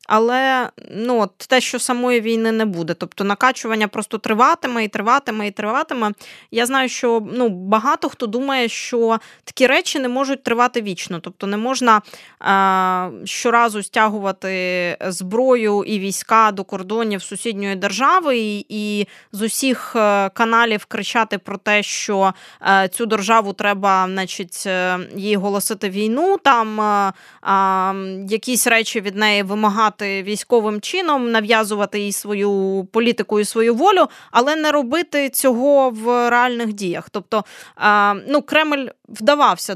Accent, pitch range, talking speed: native, 200-245 Hz, 135 wpm